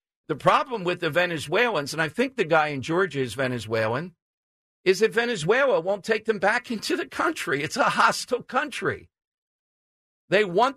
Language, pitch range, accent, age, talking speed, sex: English, 140-190 Hz, American, 50-69, 165 wpm, male